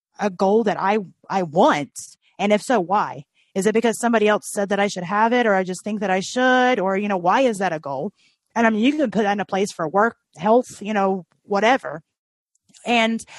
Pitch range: 175-225 Hz